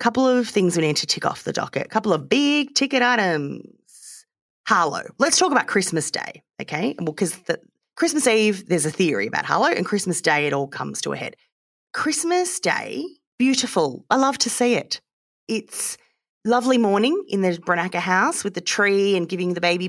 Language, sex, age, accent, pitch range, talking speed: English, female, 30-49, Australian, 170-245 Hz, 190 wpm